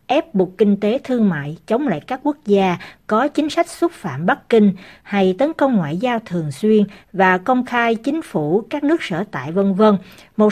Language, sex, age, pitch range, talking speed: Vietnamese, female, 60-79, 175-245 Hz, 210 wpm